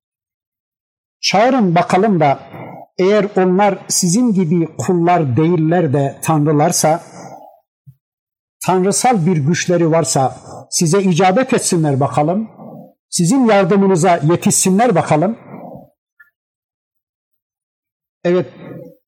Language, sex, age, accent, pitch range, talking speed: Turkish, male, 60-79, native, 145-185 Hz, 75 wpm